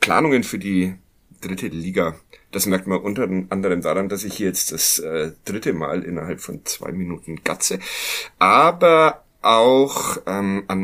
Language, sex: German, male